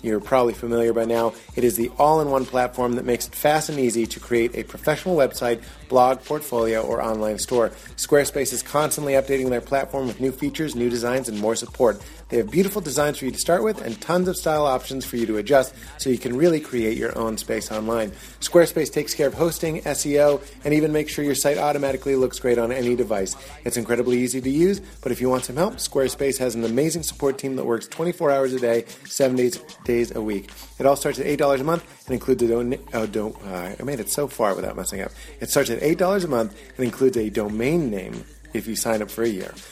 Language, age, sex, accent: English, 30-49, male, American